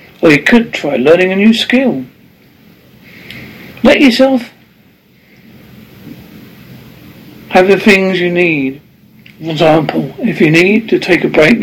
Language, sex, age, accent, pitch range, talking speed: English, male, 60-79, British, 165-215 Hz, 125 wpm